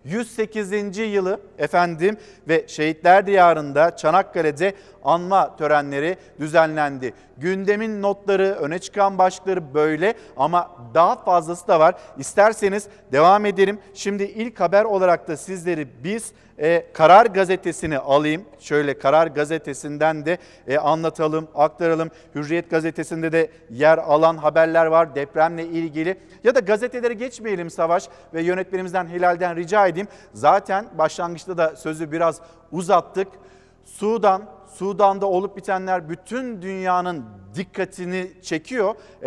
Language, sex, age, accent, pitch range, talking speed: Turkish, male, 50-69, native, 160-195 Hz, 115 wpm